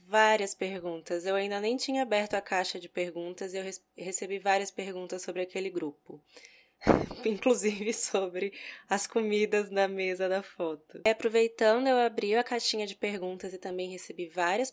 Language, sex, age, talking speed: Portuguese, female, 10-29, 160 wpm